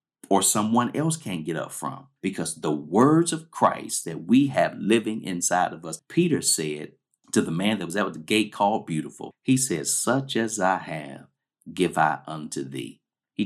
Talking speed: 185 wpm